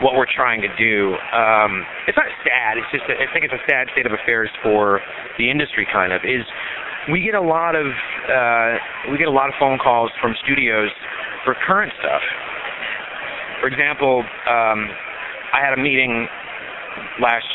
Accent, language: American, English